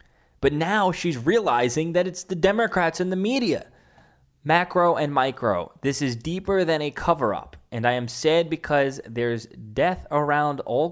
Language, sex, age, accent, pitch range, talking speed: English, male, 20-39, American, 120-155 Hz, 160 wpm